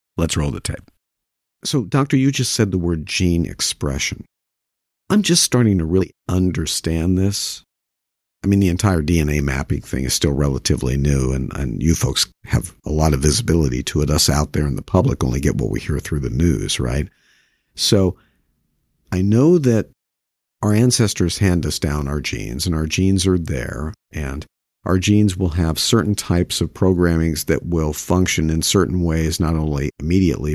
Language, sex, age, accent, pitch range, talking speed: English, male, 50-69, American, 80-105 Hz, 180 wpm